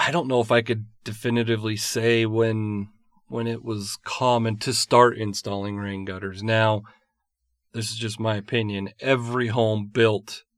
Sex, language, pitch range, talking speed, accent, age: male, English, 105-120 Hz, 155 wpm, American, 40-59